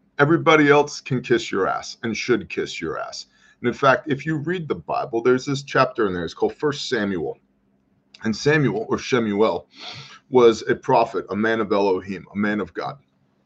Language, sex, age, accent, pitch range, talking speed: English, male, 30-49, American, 110-145 Hz, 190 wpm